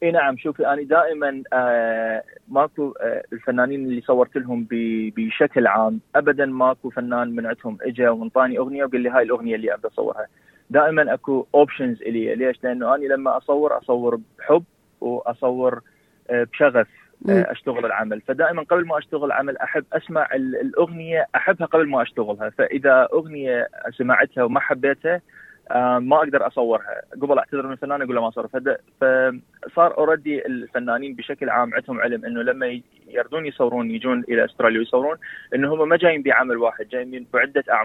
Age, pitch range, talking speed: 20-39, 120-150 Hz, 155 wpm